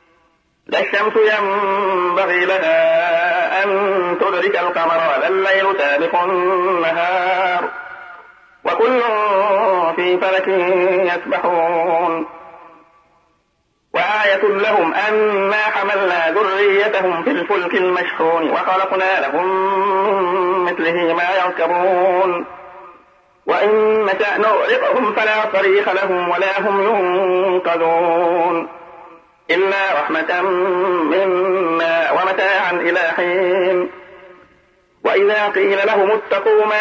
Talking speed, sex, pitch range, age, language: 75 wpm, male, 170-195 Hz, 50-69, Arabic